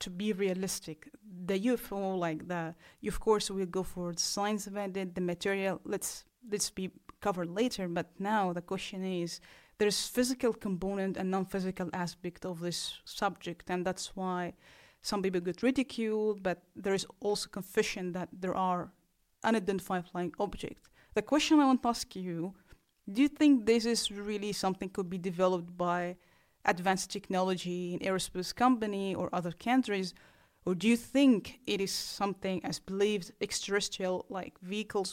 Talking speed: 155 wpm